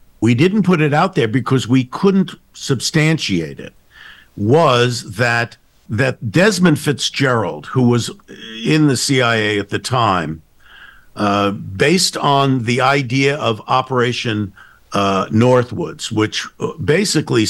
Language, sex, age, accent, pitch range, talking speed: English, male, 50-69, American, 110-150 Hz, 120 wpm